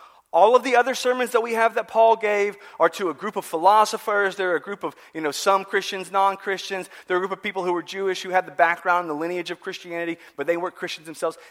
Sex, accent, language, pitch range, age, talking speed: male, American, English, 150-215 Hz, 30-49, 255 wpm